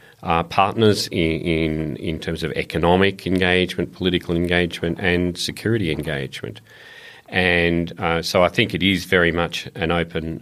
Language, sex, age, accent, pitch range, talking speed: English, male, 40-59, Australian, 80-90 Hz, 145 wpm